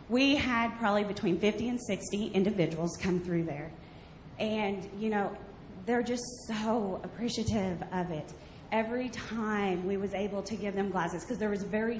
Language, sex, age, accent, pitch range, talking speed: English, female, 30-49, American, 170-210 Hz, 165 wpm